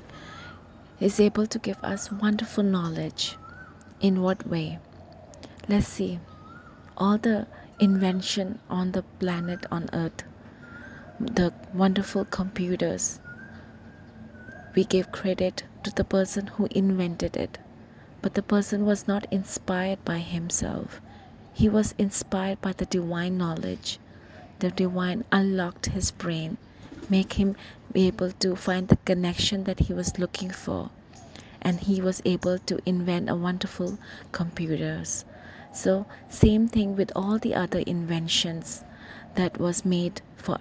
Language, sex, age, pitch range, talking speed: English, female, 20-39, 170-195 Hz, 125 wpm